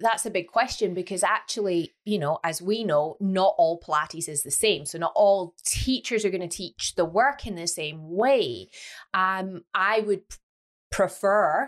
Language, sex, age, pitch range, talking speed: English, female, 30-49, 165-210 Hz, 180 wpm